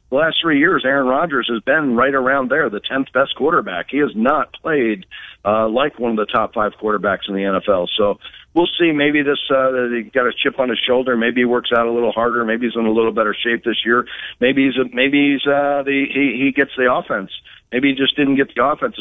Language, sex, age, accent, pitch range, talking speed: English, male, 50-69, American, 110-140 Hz, 245 wpm